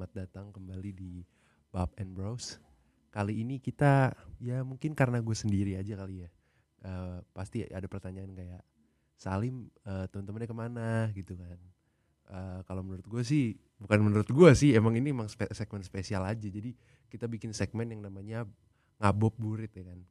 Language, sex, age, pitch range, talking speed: Indonesian, male, 20-39, 95-110 Hz, 160 wpm